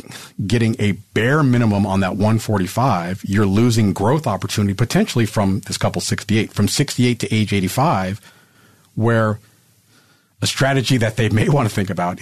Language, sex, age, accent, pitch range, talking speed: English, male, 50-69, American, 100-135 Hz, 150 wpm